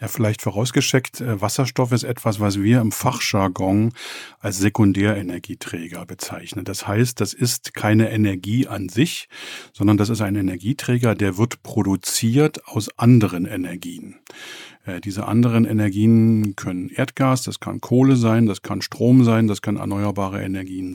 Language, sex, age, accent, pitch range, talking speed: German, male, 50-69, German, 100-125 Hz, 145 wpm